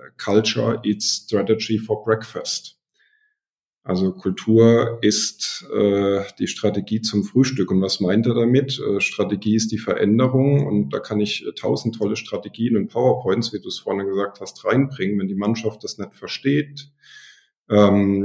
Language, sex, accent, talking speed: German, male, German, 155 wpm